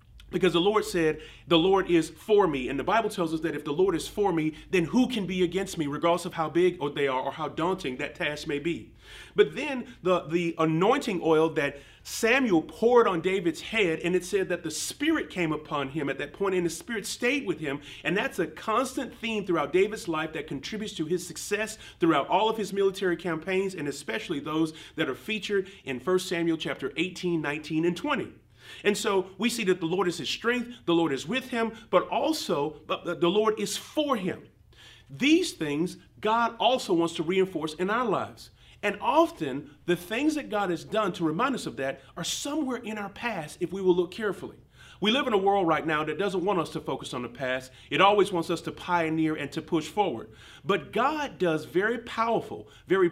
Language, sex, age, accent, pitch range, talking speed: English, male, 30-49, American, 160-215 Hz, 215 wpm